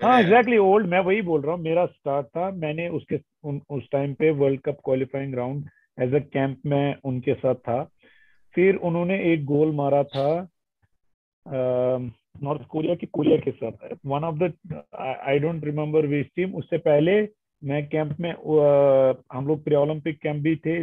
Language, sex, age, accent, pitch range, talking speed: English, male, 40-59, Indian, 140-170 Hz, 130 wpm